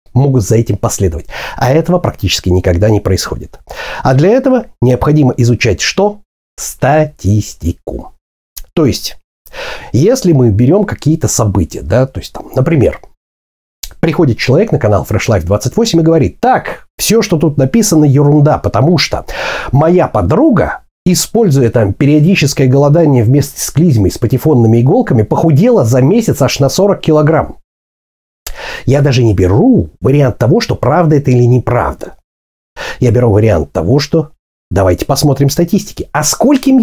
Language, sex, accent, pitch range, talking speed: Russian, male, native, 110-160 Hz, 140 wpm